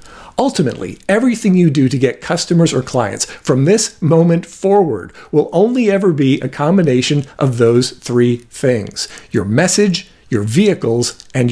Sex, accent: male, American